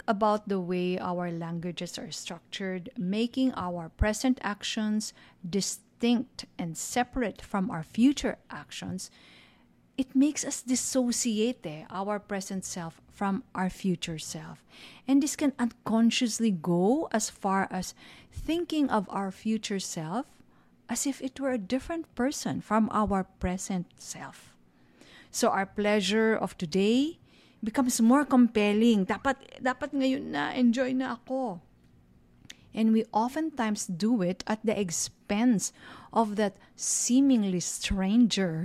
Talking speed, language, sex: 125 wpm, English, female